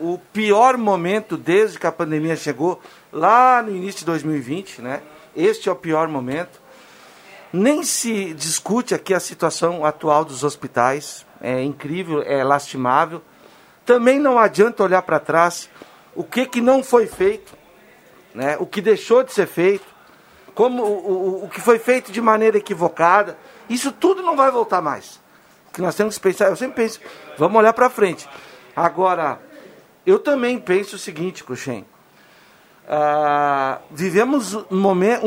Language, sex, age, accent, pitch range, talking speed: Portuguese, male, 60-79, Brazilian, 165-225 Hz, 155 wpm